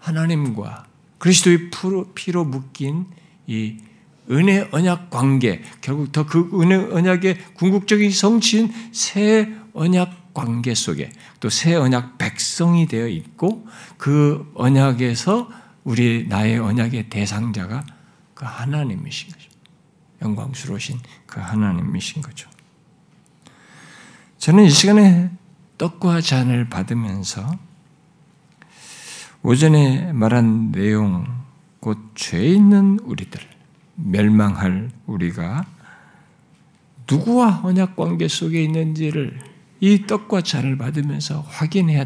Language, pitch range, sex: Korean, 125-175 Hz, male